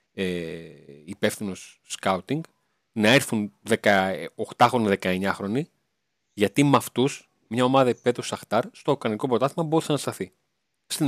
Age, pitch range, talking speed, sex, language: 30-49, 110-160 Hz, 115 wpm, male, Greek